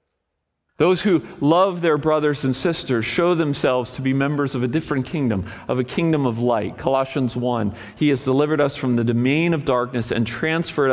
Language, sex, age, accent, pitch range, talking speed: English, male, 40-59, American, 105-145 Hz, 185 wpm